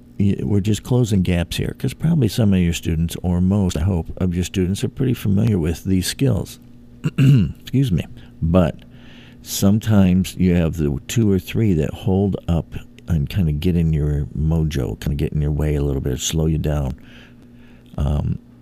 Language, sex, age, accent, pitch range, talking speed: English, male, 50-69, American, 80-110 Hz, 185 wpm